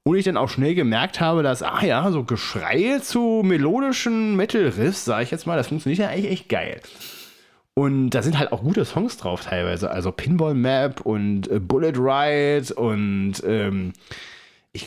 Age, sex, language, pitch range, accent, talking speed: 20-39, male, English, 110-155 Hz, German, 175 wpm